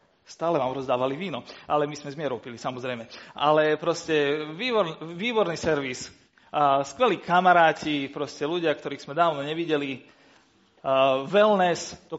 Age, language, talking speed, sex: 40-59, Slovak, 125 wpm, male